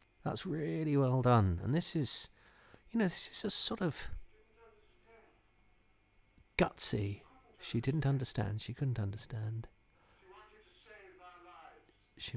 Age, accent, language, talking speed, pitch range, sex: 40-59, British, English, 105 wpm, 110-155 Hz, male